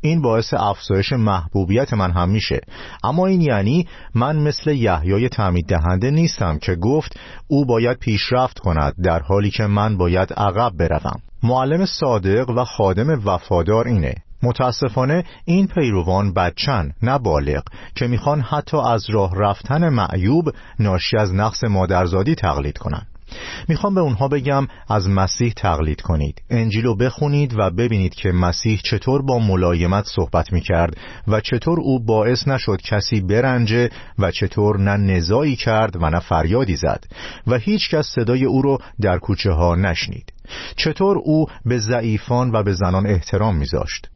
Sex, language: male, Persian